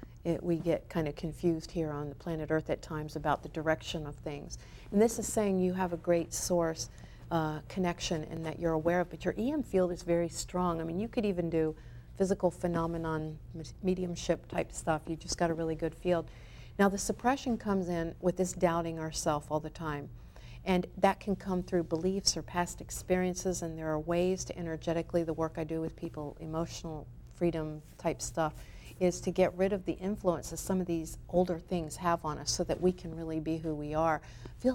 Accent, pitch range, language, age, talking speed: American, 155-180 Hz, English, 50-69, 210 wpm